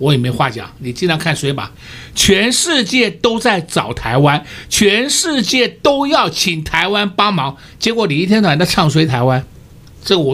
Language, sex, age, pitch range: Chinese, male, 60-79, 140-225 Hz